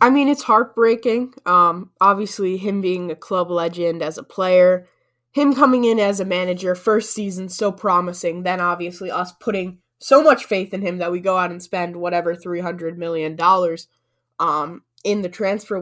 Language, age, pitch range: English, 10-29, 170-210 Hz